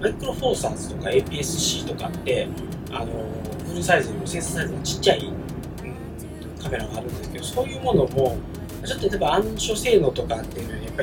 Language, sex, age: Japanese, male, 20-39